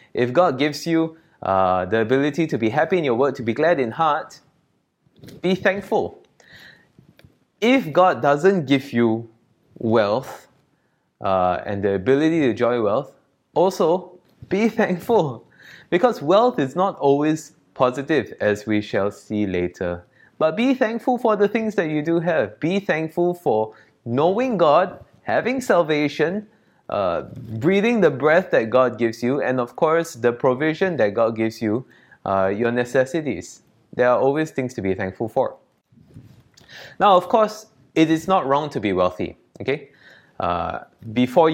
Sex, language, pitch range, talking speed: male, English, 110-165 Hz, 150 wpm